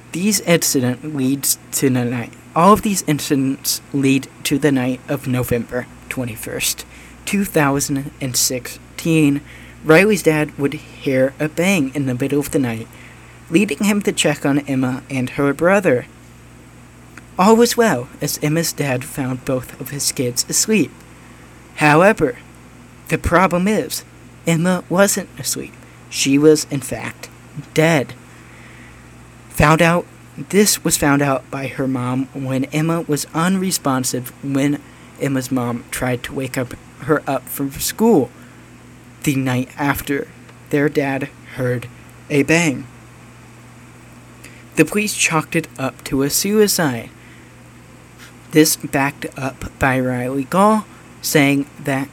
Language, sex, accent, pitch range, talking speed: English, male, American, 125-155 Hz, 130 wpm